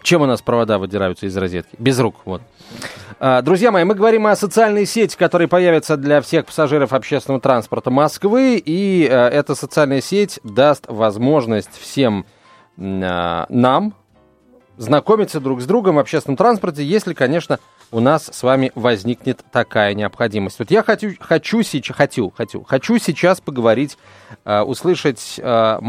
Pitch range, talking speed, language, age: 120-175 Hz, 130 wpm, Russian, 30-49